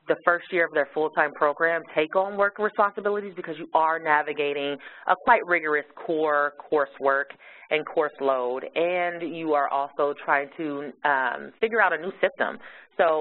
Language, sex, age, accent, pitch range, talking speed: English, female, 30-49, American, 145-190 Hz, 165 wpm